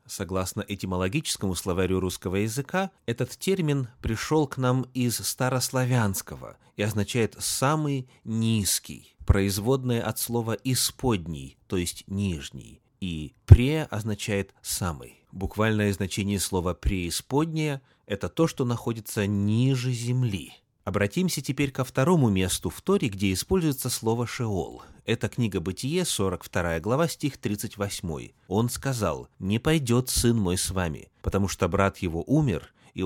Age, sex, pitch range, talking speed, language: 30-49, male, 100-130 Hz, 125 wpm, Russian